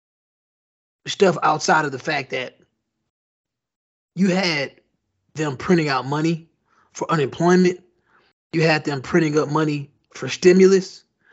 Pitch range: 145-185 Hz